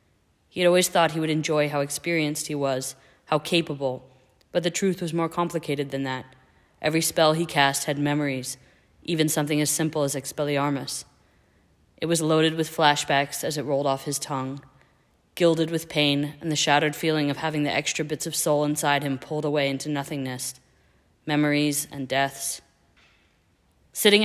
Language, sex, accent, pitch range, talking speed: English, female, American, 135-160 Hz, 170 wpm